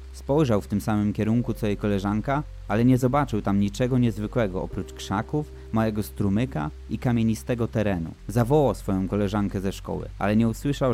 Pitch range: 100-125 Hz